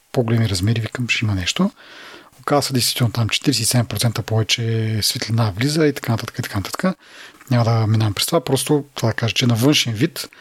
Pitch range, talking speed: 115-145 Hz, 185 wpm